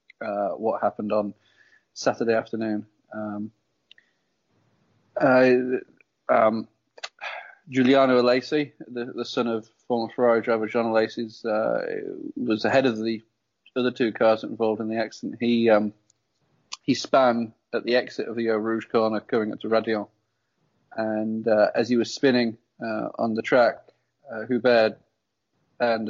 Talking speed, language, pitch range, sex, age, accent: 140 wpm, English, 110-125 Hz, male, 30-49, British